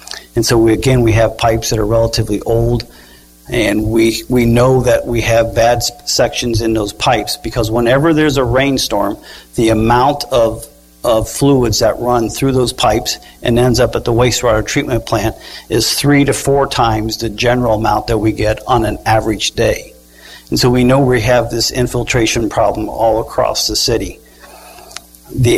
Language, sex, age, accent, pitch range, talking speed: English, male, 50-69, American, 110-130 Hz, 175 wpm